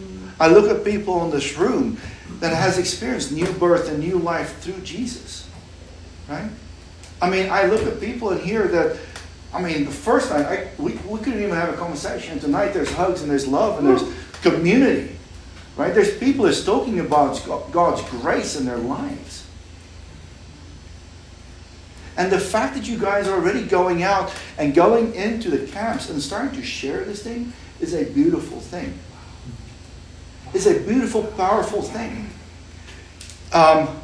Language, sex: English, male